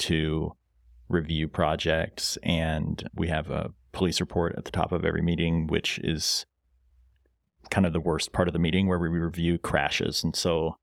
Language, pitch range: English, 80-90 Hz